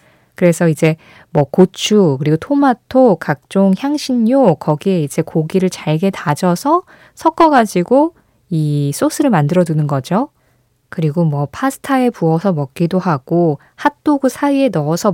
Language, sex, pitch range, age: Korean, female, 150-240 Hz, 20-39